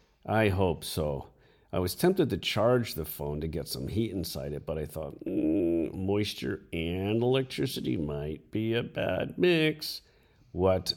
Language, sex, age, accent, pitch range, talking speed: English, male, 50-69, American, 85-120 Hz, 160 wpm